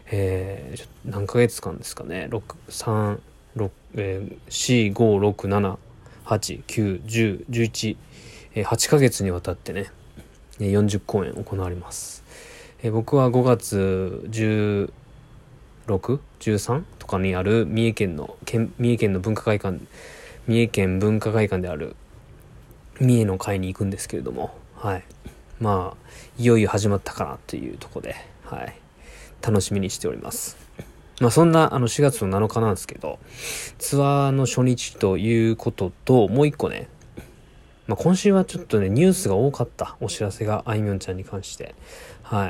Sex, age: male, 20-39